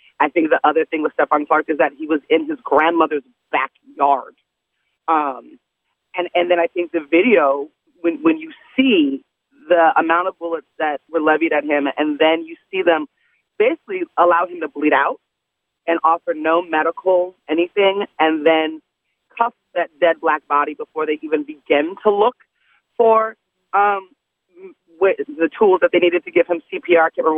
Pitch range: 155-190 Hz